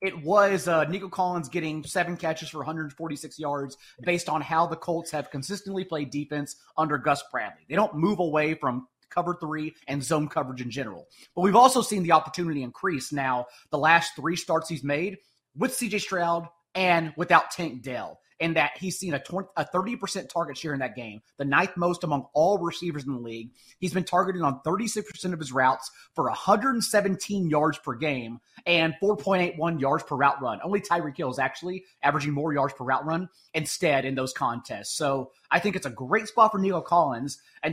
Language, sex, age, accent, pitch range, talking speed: English, male, 30-49, American, 140-180 Hz, 190 wpm